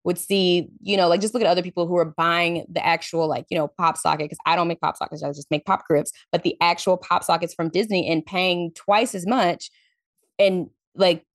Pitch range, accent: 160-195 Hz, American